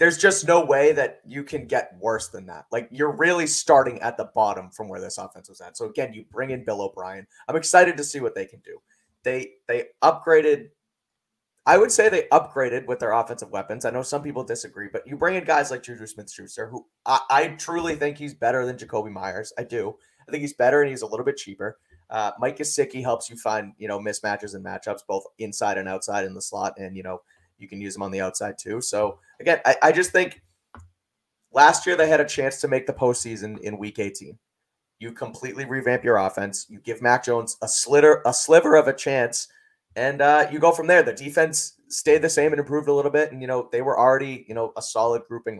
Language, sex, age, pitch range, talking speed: English, male, 20-39, 110-155 Hz, 235 wpm